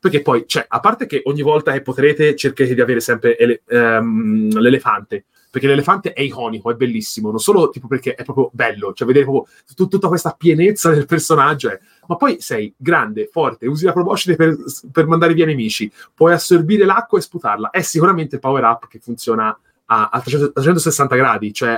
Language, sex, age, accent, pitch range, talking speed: Italian, male, 30-49, native, 130-185 Hz, 195 wpm